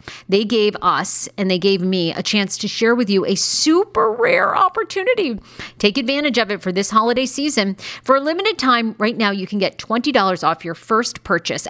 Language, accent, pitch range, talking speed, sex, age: English, American, 180-235 Hz, 200 wpm, female, 40-59